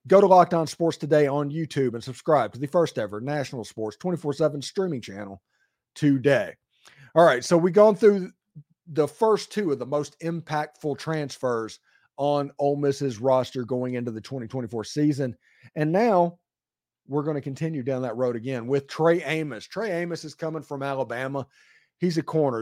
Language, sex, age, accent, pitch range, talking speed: English, male, 40-59, American, 130-165 Hz, 170 wpm